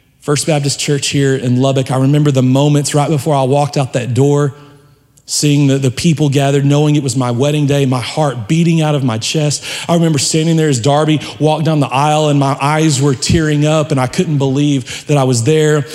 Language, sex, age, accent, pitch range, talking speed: English, male, 40-59, American, 125-145 Hz, 220 wpm